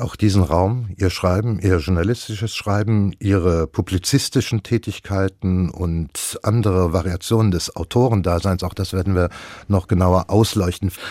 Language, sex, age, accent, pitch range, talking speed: German, male, 60-79, German, 90-115 Hz, 125 wpm